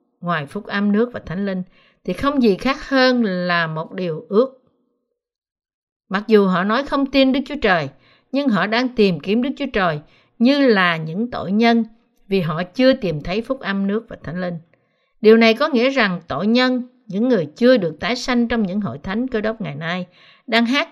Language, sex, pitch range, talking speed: Vietnamese, female, 180-245 Hz, 205 wpm